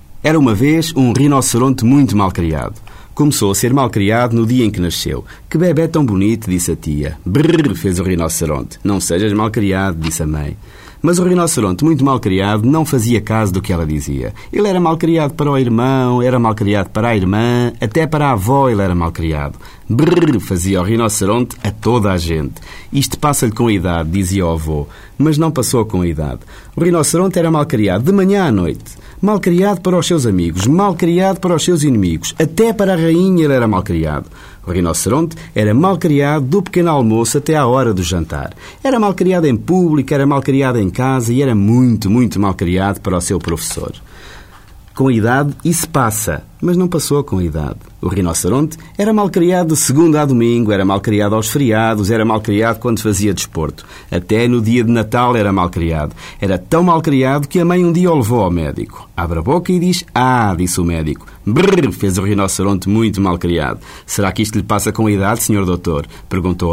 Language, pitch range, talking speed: Portuguese, 95-145 Hz, 205 wpm